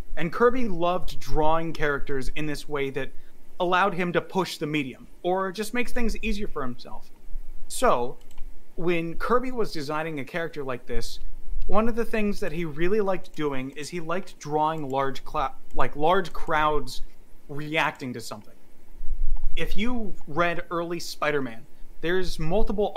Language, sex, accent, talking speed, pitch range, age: English, male, American, 155 wpm, 150-210 Hz, 30-49